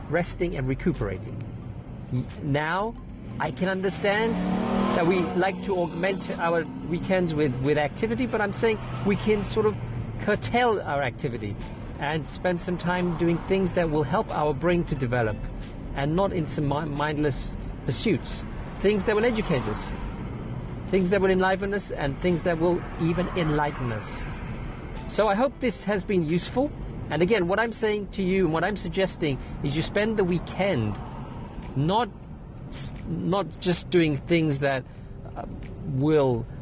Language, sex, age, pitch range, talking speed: English, male, 50-69, 130-185 Hz, 150 wpm